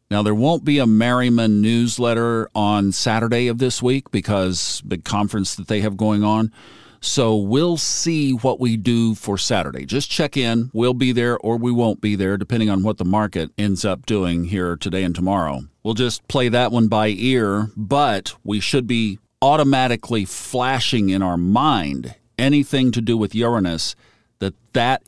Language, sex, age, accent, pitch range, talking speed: English, male, 50-69, American, 105-130 Hz, 175 wpm